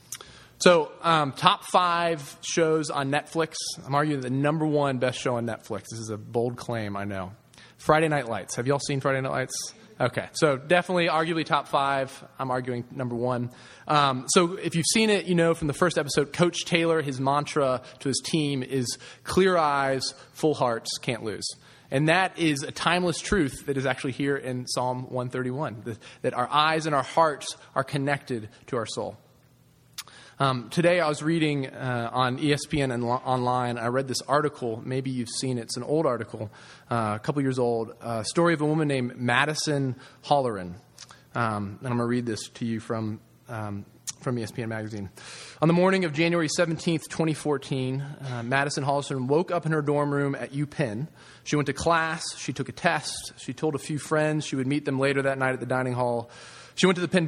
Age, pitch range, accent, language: 20-39, 125-155 Hz, American, English